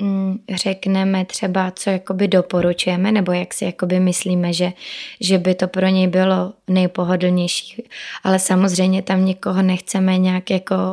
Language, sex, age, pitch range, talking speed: Czech, female, 20-39, 190-215 Hz, 130 wpm